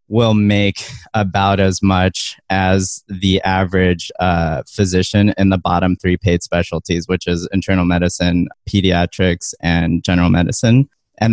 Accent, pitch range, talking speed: American, 90-100 Hz, 130 wpm